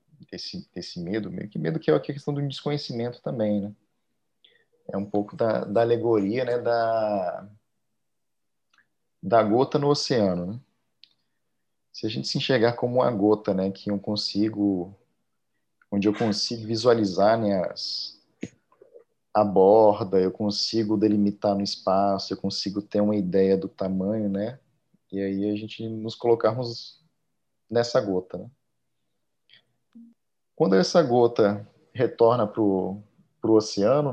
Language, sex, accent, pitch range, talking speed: Portuguese, male, Brazilian, 100-130 Hz, 130 wpm